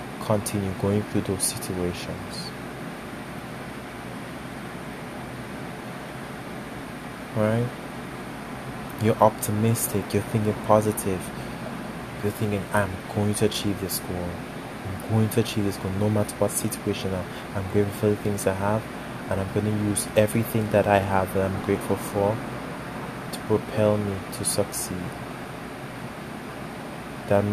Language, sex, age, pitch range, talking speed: English, male, 20-39, 100-110 Hz, 120 wpm